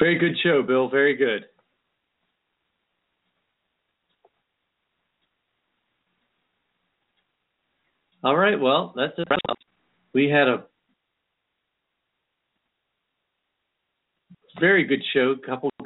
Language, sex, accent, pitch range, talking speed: English, male, American, 115-140 Hz, 75 wpm